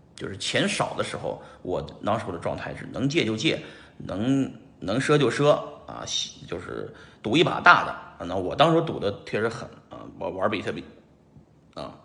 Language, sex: Chinese, male